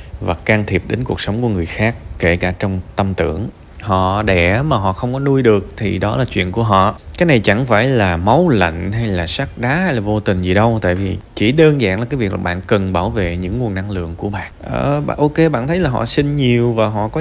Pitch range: 95-125 Hz